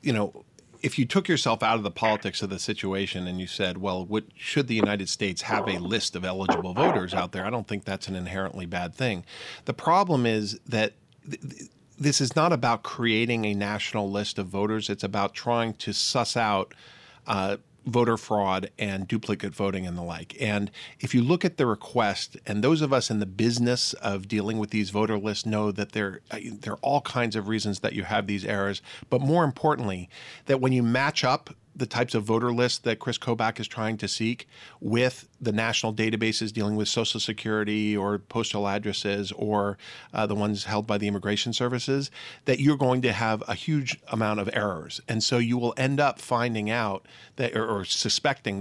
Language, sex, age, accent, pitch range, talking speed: English, male, 40-59, American, 100-120 Hz, 205 wpm